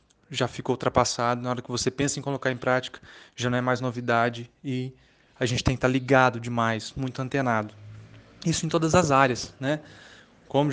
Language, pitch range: English, 120-140 Hz